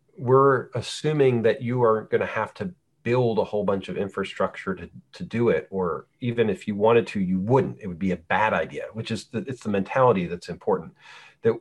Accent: American